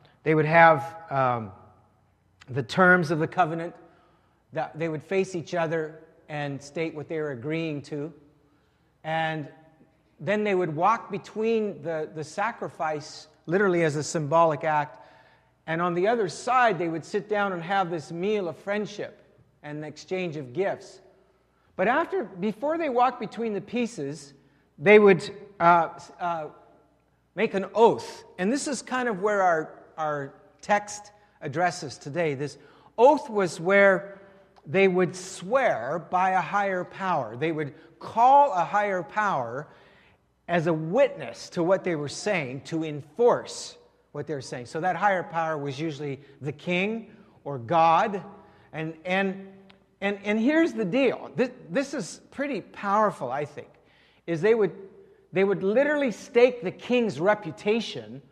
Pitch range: 155-205 Hz